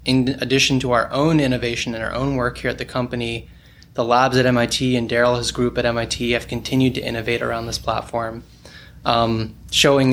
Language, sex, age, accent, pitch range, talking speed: English, male, 20-39, American, 115-130 Hz, 190 wpm